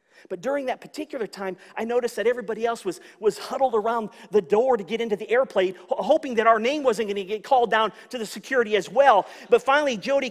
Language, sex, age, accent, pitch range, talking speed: English, male, 40-59, American, 215-300 Hz, 220 wpm